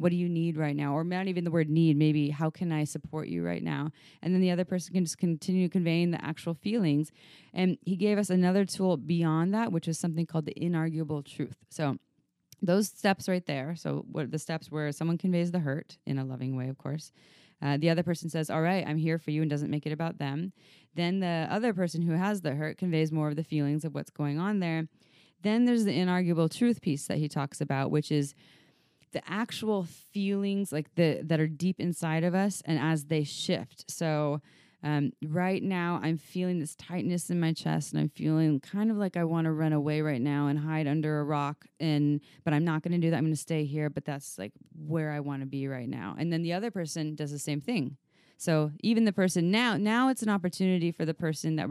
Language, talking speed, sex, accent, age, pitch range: English, 235 wpm, female, American, 20-39, 150-180 Hz